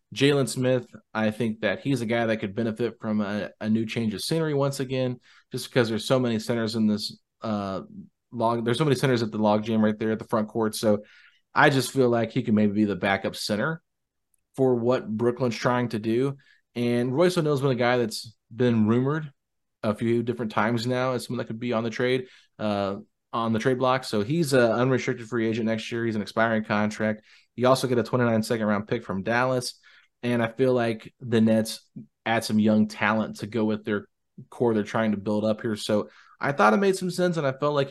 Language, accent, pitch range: English, American, 110-125 Hz